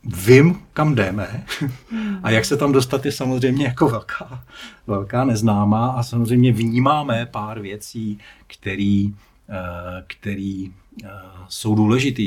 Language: Czech